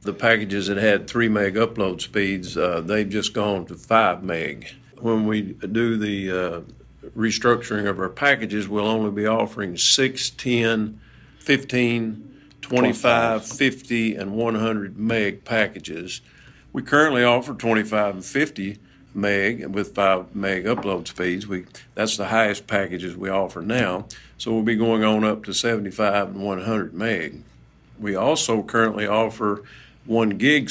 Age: 50-69